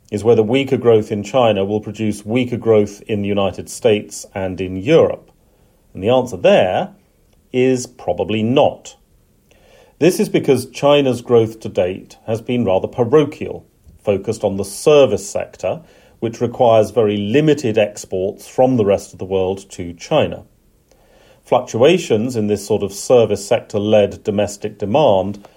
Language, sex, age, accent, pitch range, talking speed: English, male, 40-59, British, 100-125 Hz, 145 wpm